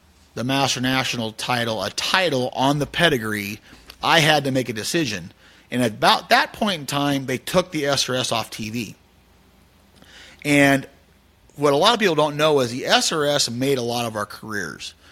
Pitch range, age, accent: 110-145 Hz, 30-49, American